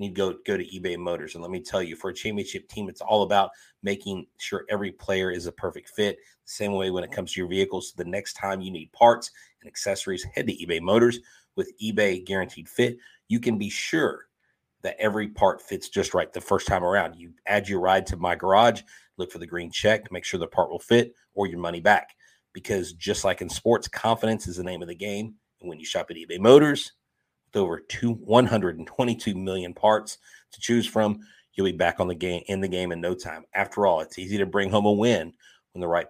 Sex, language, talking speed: male, English, 230 wpm